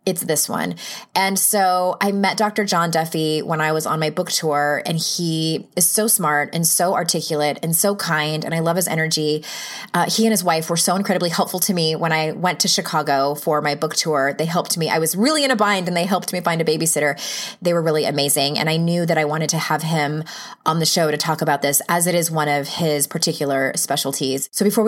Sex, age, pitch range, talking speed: female, 20-39, 155-195 Hz, 240 wpm